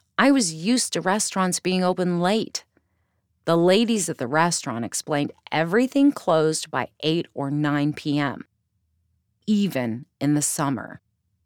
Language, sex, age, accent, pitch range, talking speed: English, female, 30-49, American, 125-190 Hz, 130 wpm